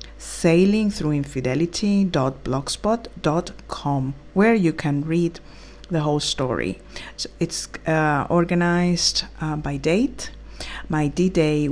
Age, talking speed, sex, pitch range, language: 50-69, 80 wpm, female, 150-180 Hz, English